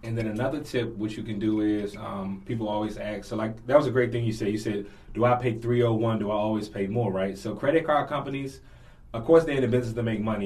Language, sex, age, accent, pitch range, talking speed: English, male, 20-39, American, 105-120 Hz, 270 wpm